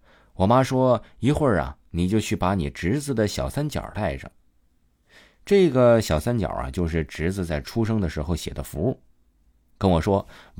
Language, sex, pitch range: Chinese, male, 75-110 Hz